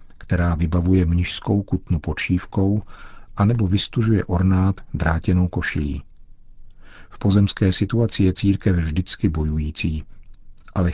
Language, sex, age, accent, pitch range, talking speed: Czech, male, 50-69, native, 85-100 Hz, 100 wpm